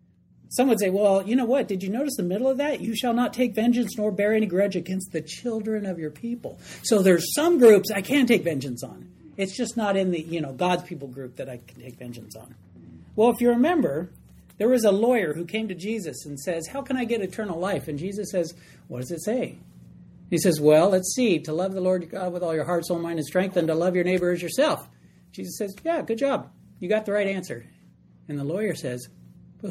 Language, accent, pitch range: English, American, 150-220 Hz